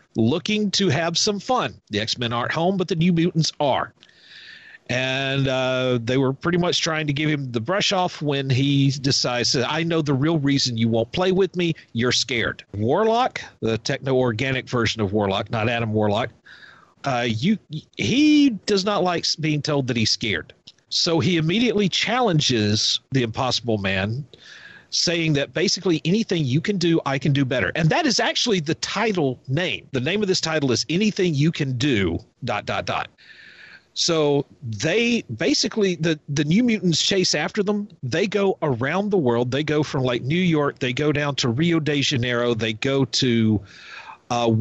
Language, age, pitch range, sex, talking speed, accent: English, 40-59, 125-175 Hz, male, 180 wpm, American